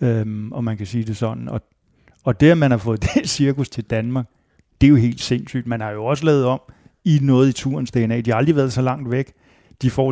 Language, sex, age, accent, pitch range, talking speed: Danish, male, 30-49, native, 115-140 Hz, 255 wpm